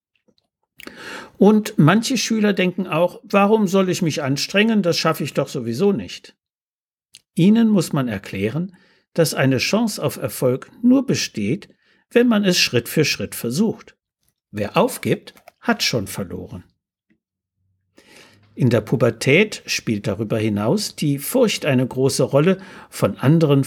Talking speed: 130 wpm